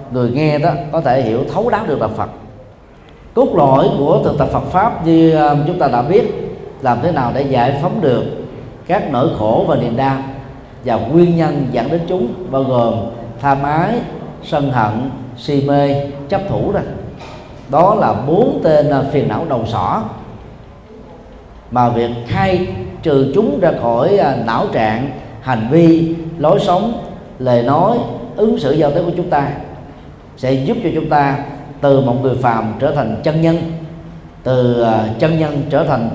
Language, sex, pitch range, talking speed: Vietnamese, male, 120-160 Hz, 170 wpm